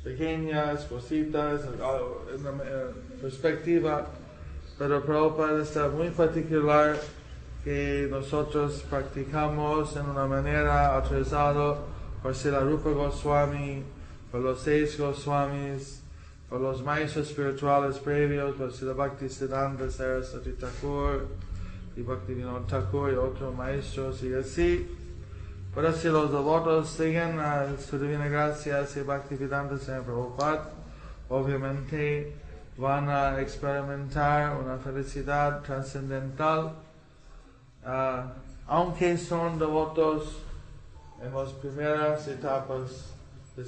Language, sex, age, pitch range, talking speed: English, male, 20-39, 130-150 Hz, 105 wpm